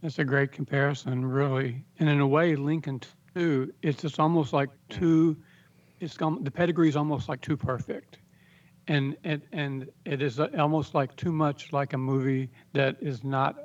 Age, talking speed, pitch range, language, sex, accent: 60-79, 170 wpm, 140-160 Hz, English, male, American